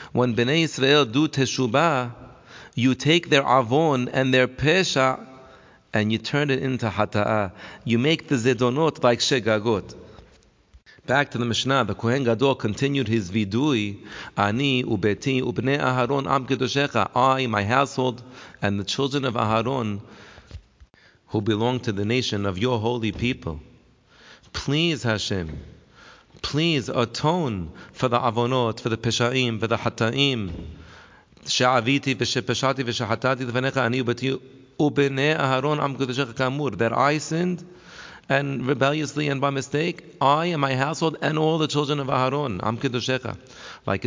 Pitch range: 115-140 Hz